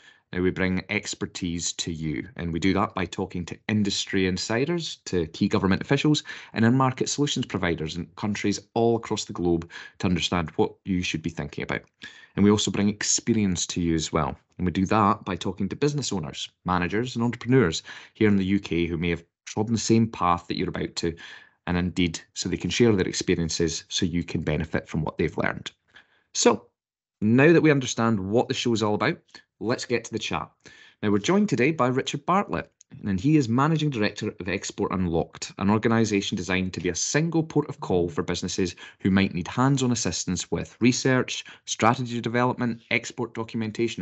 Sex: male